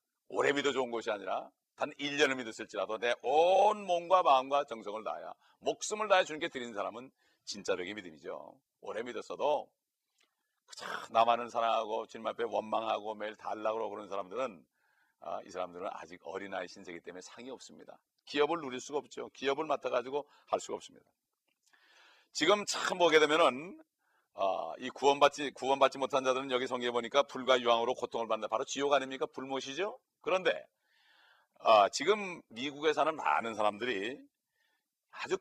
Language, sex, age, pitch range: Korean, male, 40-59, 115-155 Hz